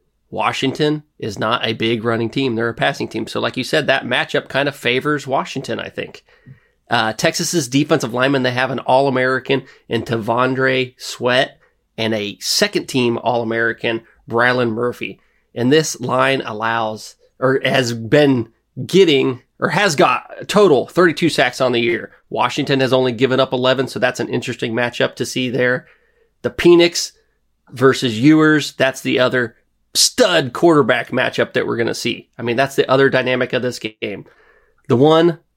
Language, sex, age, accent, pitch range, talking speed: English, male, 30-49, American, 120-145 Hz, 165 wpm